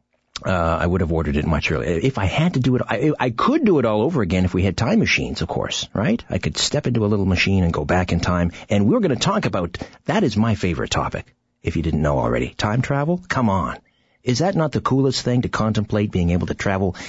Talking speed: 260 wpm